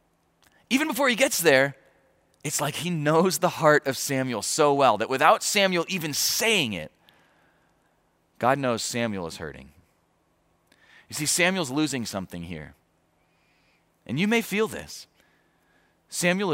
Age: 30-49